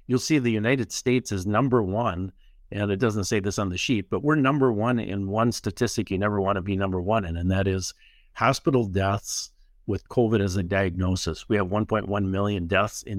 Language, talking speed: English, 215 wpm